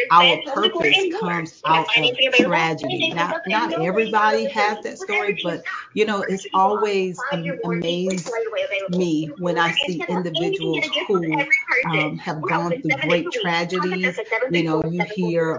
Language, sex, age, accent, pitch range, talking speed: English, female, 40-59, American, 165-225 Hz, 135 wpm